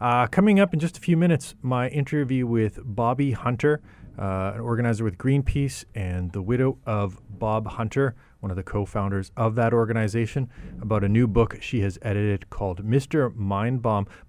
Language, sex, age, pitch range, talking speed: English, male, 30-49, 95-125 Hz, 170 wpm